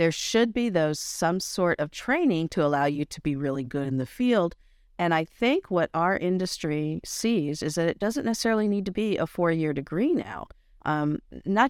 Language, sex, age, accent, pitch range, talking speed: English, female, 50-69, American, 145-195 Hz, 200 wpm